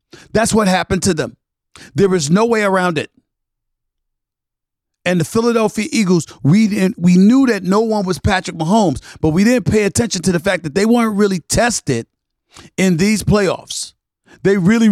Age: 50-69